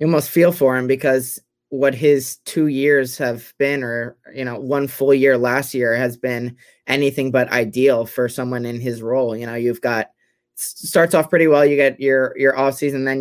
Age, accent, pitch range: 20-39, American, 125-140 Hz